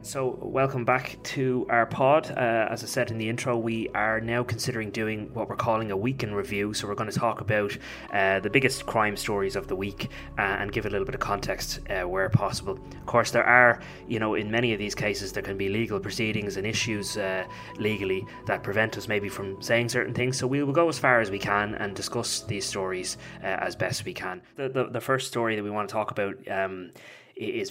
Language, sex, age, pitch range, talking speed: English, male, 20-39, 100-120 Hz, 235 wpm